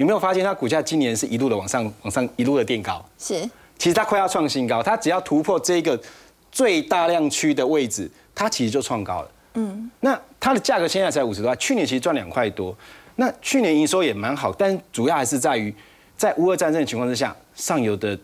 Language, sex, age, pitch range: Chinese, male, 30-49, 145-230 Hz